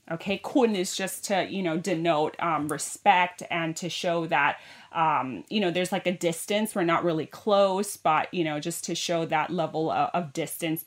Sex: female